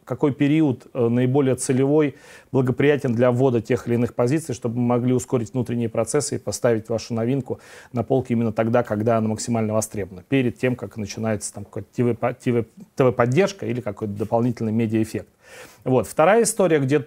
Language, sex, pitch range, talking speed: Russian, male, 120-150 Hz, 160 wpm